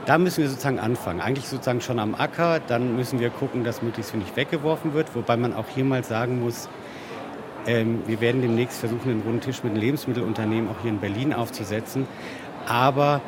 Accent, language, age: German, German, 50-69